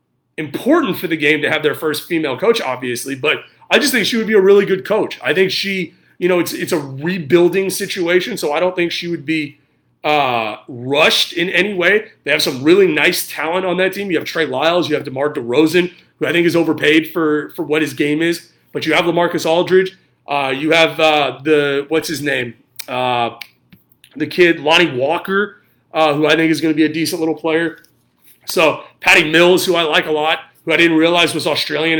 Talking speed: 220 wpm